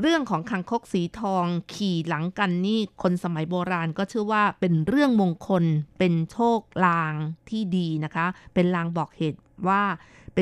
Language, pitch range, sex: Thai, 175-220 Hz, female